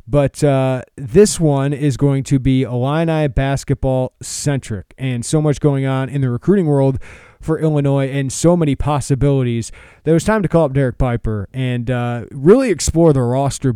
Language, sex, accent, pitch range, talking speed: English, male, American, 125-155 Hz, 170 wpm